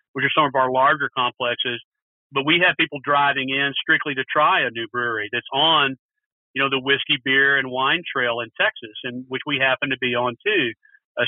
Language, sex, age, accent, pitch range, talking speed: English, male, 50-69, American, 135-160 Hz, 215 wpm